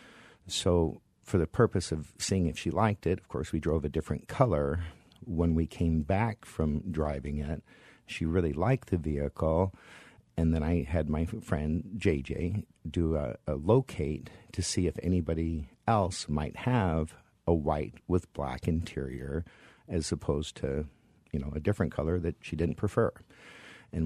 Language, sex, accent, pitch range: English, male, American, 75-95 Hz